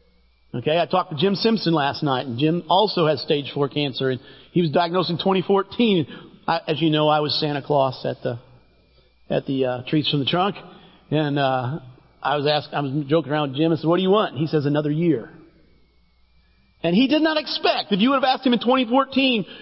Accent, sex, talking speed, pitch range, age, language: American, male, 225 wpm, 155-230 Hz, 40-59, English